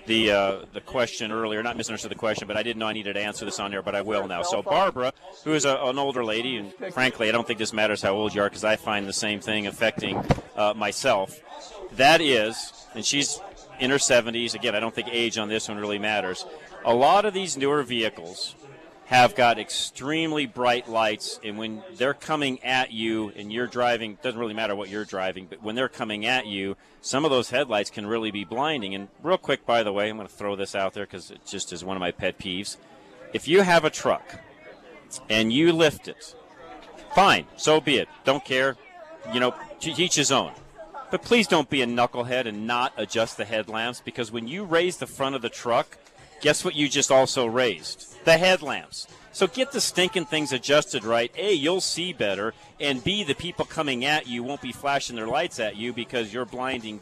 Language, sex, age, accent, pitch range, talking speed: English, male, 40-59, American, 110-145 Hz, 220 wpm